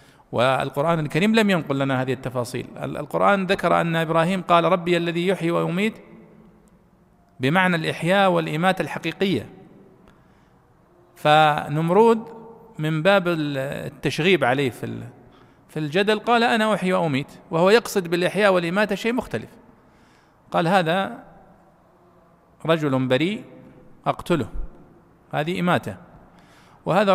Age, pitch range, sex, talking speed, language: 50-69, 130-185 Hz, male, 100 wpm, Arabic